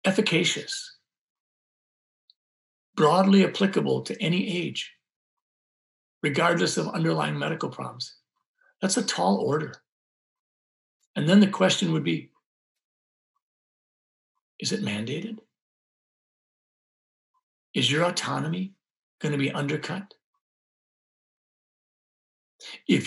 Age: 60-79